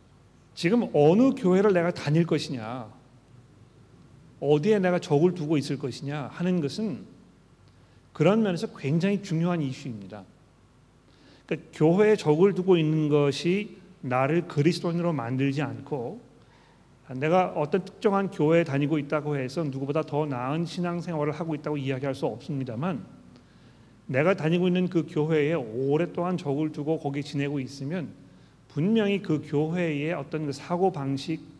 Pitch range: 130-170 Hz